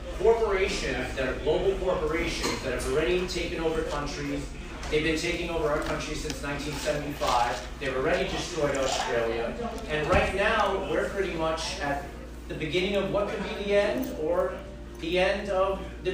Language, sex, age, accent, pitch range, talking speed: English, male, 40-59, American, 140-180 Hz, 155 wpm